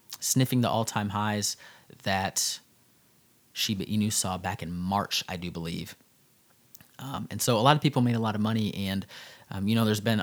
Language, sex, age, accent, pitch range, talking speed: English, male, 30-49, American, 100-115 Hz, 190 wpm